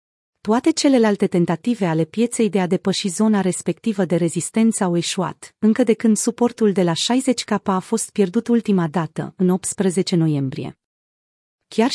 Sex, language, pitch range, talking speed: female, Romanian, 180-225 Hz, 150 wpm